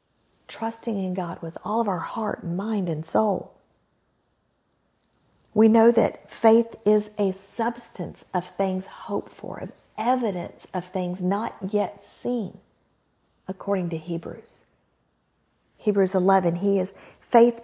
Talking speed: 125 wpm